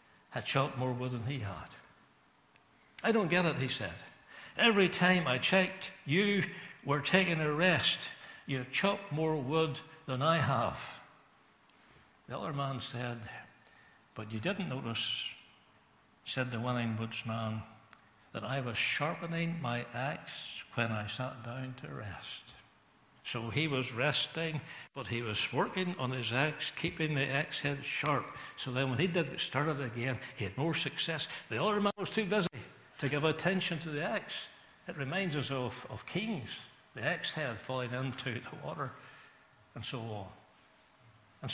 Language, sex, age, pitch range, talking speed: English, male, 60-79, 120-160 Hz, 160 wpm